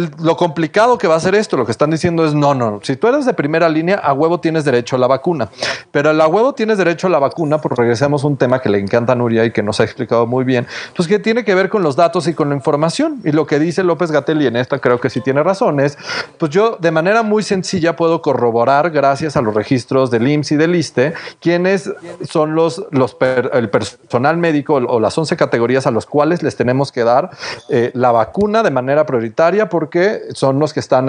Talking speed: 245 wpm